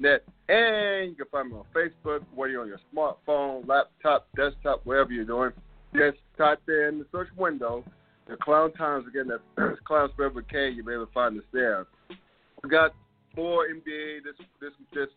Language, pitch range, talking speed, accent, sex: English, 115-140 Hz, 185 wpm, American, male